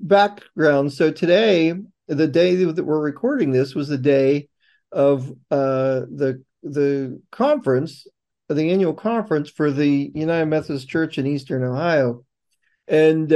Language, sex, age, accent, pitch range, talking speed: English, male, 40-59, American, 140-170 Hz, 130 wpm